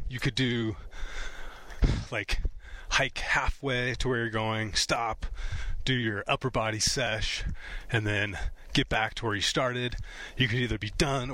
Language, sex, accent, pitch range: English, male, American, 95-125 Hz